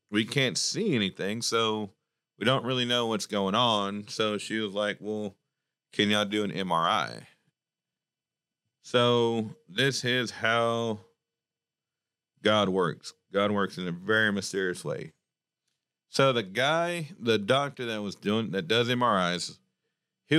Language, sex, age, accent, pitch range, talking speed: English, male, 40-59, American, 95-120 Hz, 140 wpm